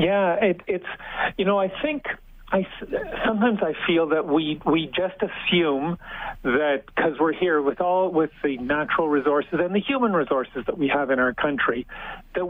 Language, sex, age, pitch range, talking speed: English, male, 50-69, 140-180 Hz, 170 wpm